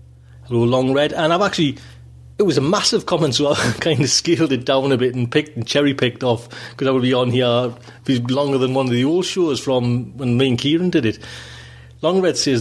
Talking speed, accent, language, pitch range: 230 wpm, British, English, 120-150 Hz